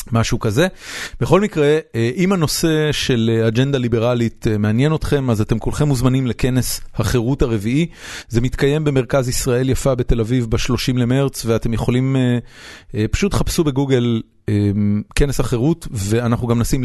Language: Hebrew